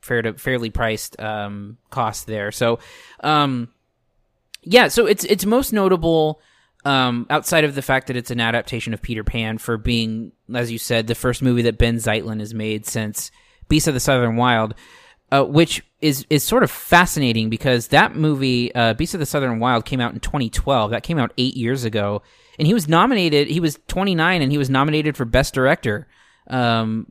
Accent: American